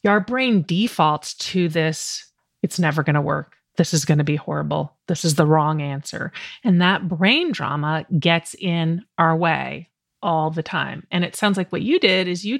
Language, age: English, 30-49